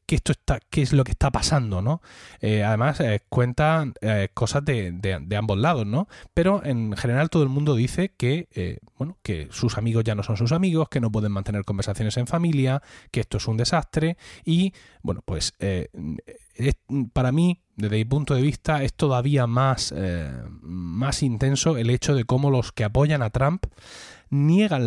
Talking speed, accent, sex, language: 195 wpm, Spanish, male, Spanish